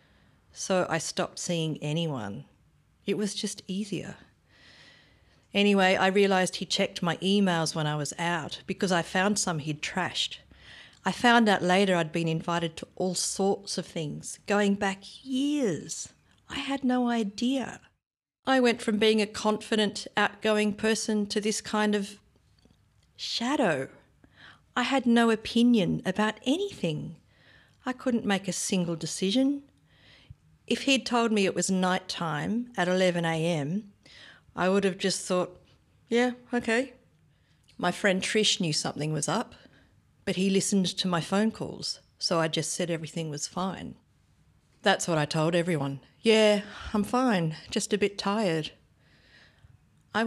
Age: 50-69